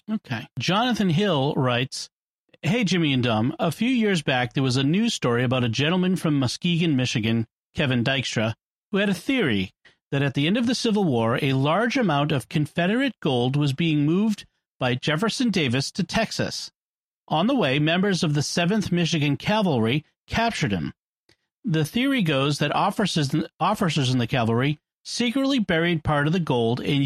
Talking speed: 170 wpm